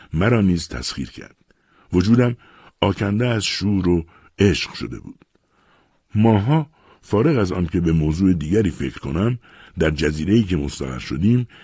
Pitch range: 75-115 Hz